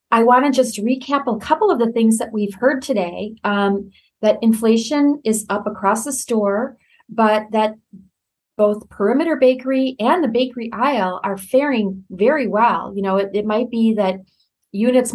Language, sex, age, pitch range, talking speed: English, female, 30-49, 200-245 Hz, 170 wpm